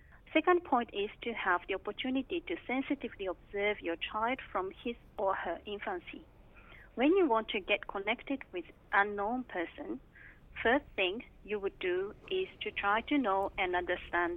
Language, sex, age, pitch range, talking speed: English, female, 40-59, 195-275 Hz, 165 wpm